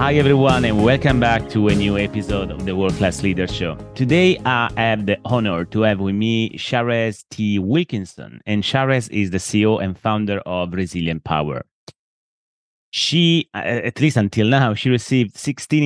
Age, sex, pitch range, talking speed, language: 30-49, male, 95-120 Hz, 170 wpm, English